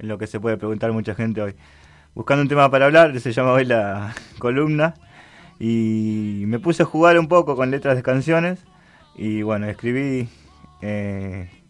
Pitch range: 110-140 Hz